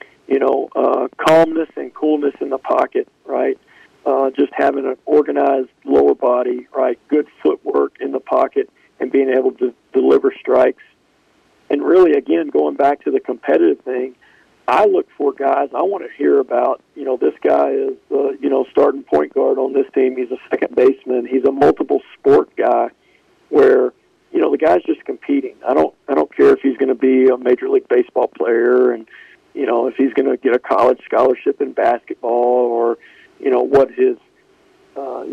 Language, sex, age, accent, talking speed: English, male, 50-69, American, 190 wpm